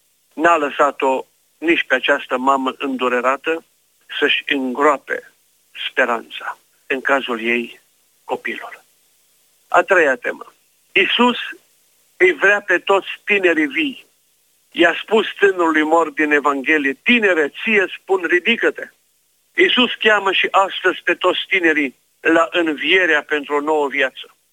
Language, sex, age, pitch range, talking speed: Romanian, male, 50-69, 130-180 Hz, 115 wpm